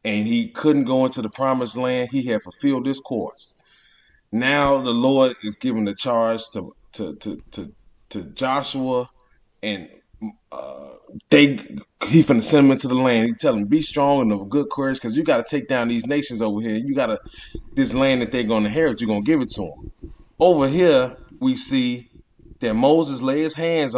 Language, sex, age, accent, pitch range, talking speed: English, male, 30-49, American, 125-170 Hz, 190 wpm